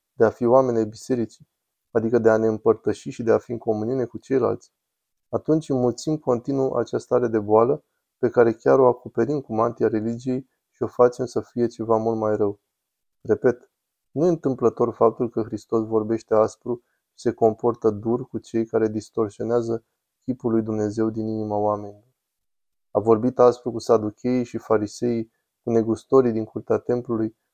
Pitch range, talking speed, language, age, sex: 110-125 Hz, 165 wpm, Romanian, 20-39, male